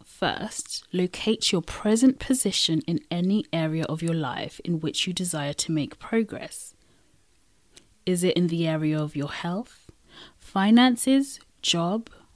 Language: English